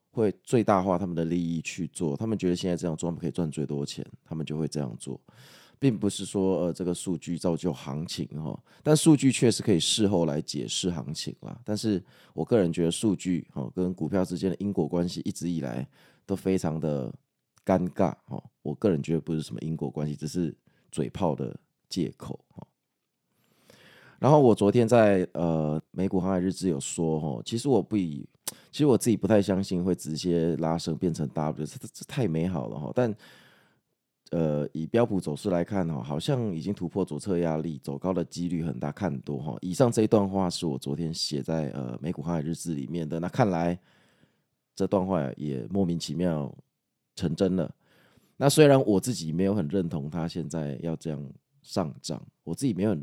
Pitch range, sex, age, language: 80-100 Hz, male, 20-39, Chinese